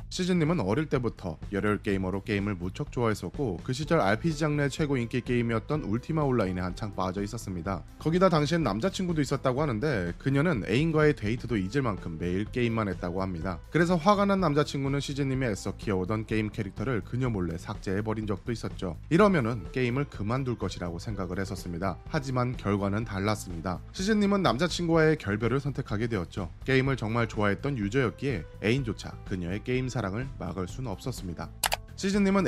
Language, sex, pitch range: Korean, male, 100-145 Hz